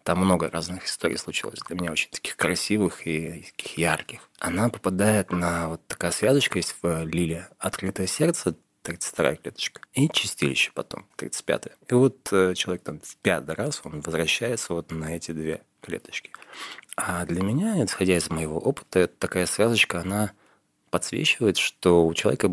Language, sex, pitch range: Russian, male, 85-105 Hz